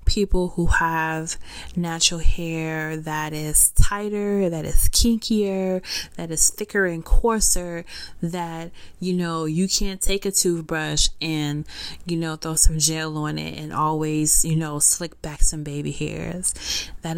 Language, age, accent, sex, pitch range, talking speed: English, 20-39, American, female, 155-185 Hz, 145 wpm